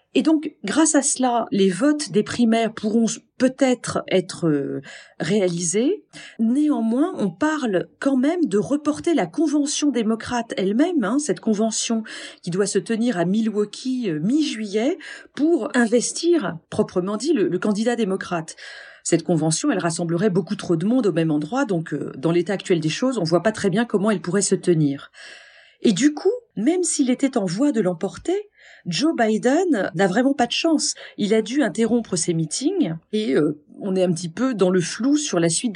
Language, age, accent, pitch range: French, 40-59, French, 185-270 Hz